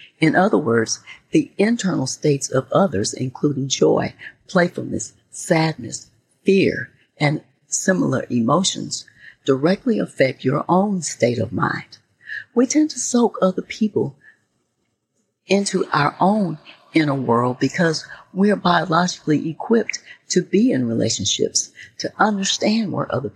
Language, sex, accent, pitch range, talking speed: English, female, American, 130-185 Hz, 120 wpm